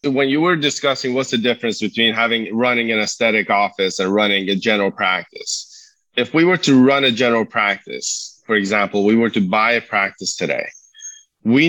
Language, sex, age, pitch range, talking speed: English, male, 30-49, 100-125 Hz, 185 wpm